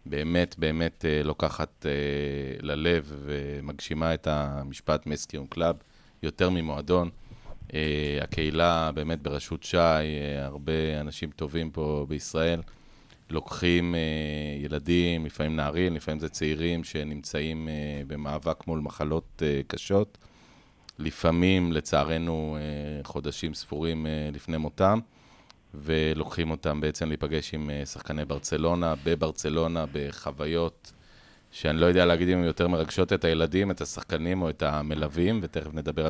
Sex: male